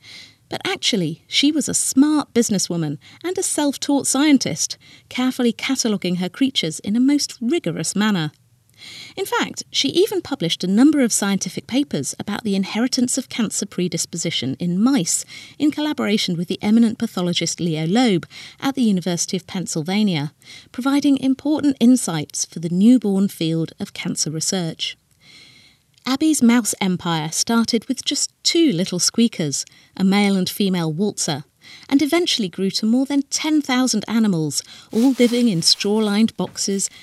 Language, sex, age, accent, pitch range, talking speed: English, female, 40-59, British, 170-250 Hz, 145 wpm